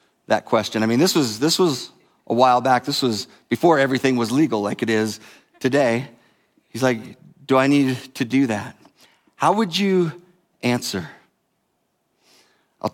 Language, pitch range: English, 125-185 Hz